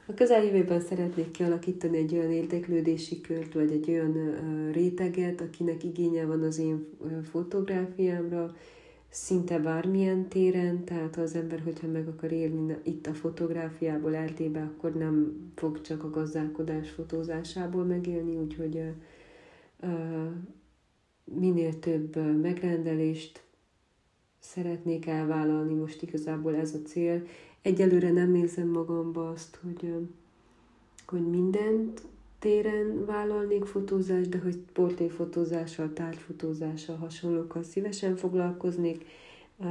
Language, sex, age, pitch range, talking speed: Hungarian, female, 30-49, 155-175 Hz, 115 wpm